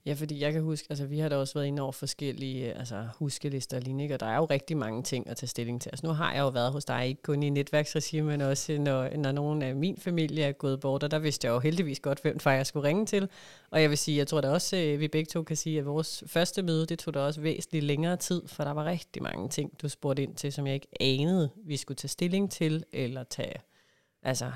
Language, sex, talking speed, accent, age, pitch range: Danish, female, 275 wpm, native, 30-49, 140-165 Hz